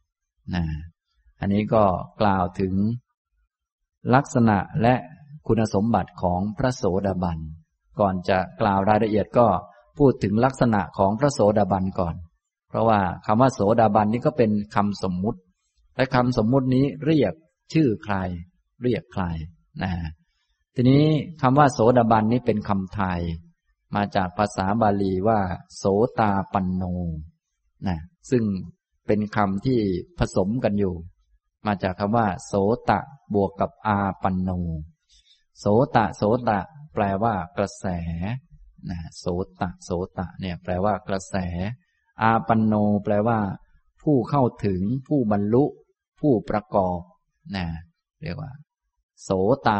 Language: Thai